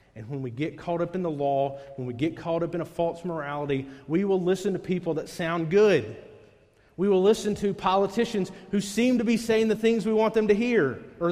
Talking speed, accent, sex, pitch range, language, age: 235 wpm, American, male, 120-170 Hz, English, 40-59